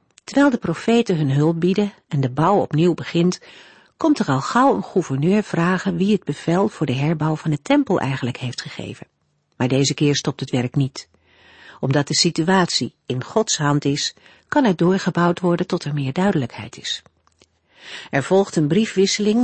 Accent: Dutch